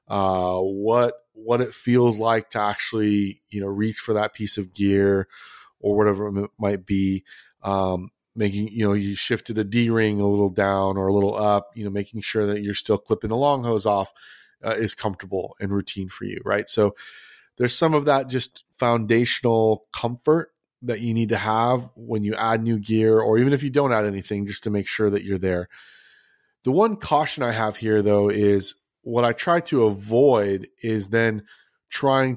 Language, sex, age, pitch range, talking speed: English, male, 30-49, 105-125 Hz, 195 wpm